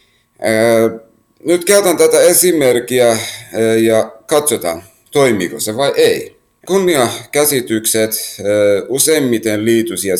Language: Finnish